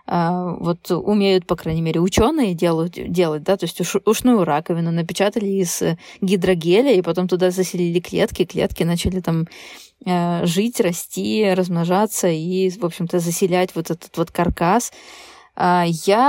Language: Russian